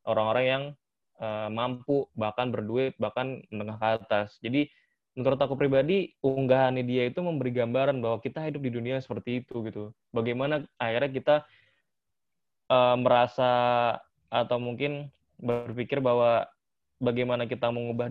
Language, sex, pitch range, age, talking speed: Indonesian, male, 110-130 Hz, 20-39, 135 wpm